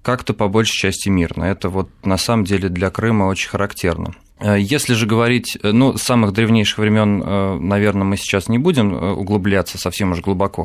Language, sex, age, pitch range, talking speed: Russian, male, 20-39, 95-115 Hz, 175 wpm